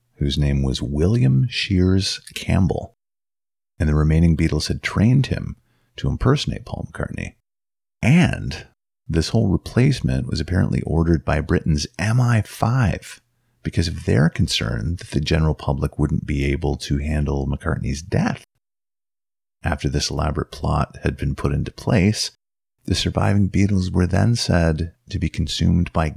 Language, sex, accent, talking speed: English, male, American, 140 wpm